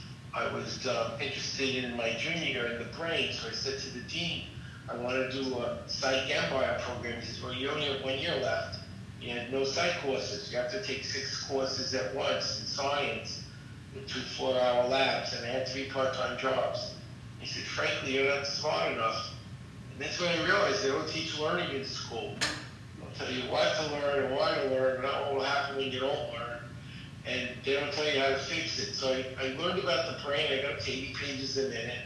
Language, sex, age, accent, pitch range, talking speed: English, male, 50-69, American, 120-140 Hz, 220 wpm